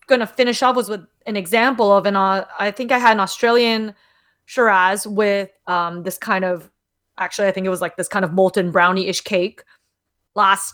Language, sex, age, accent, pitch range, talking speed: English, female, 20-39, American, 190-250 Hz, 200 wpm